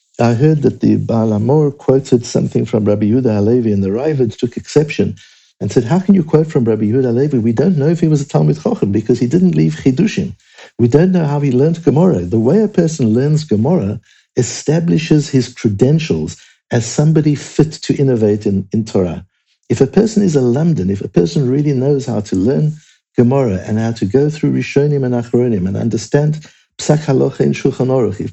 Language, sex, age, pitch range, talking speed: English, male, 60-79, 105-145 Hz, 195 wpm